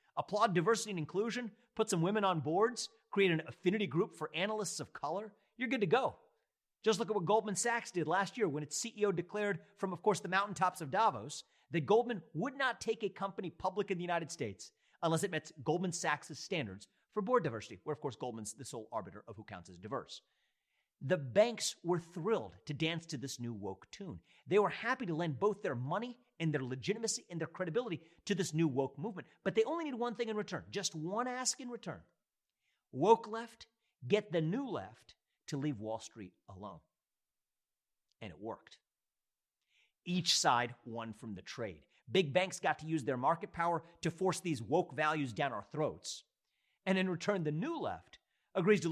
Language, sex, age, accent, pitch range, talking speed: English, male, 40-59, American, 150-210 Hz, 195 wpm